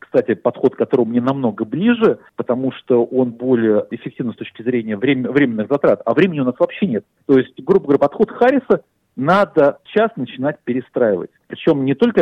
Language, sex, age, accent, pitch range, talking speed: Russian, male, 40-59, native, 120-170 Hz, 170 wpm